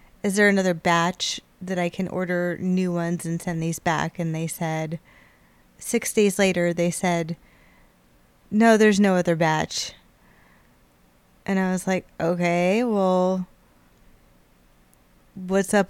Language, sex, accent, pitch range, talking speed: English, female, American, 170-205 Hz, 130 wpm